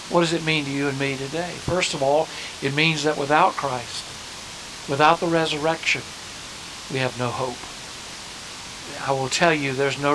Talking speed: 175 wpm